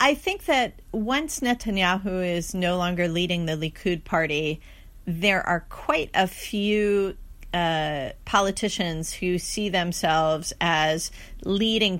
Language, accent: English, American